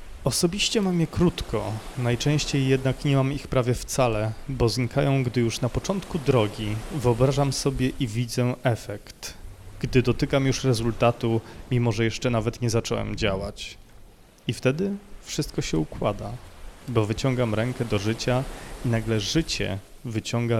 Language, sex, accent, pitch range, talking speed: Polish, male, native, 105-125 Hz, 140 wpm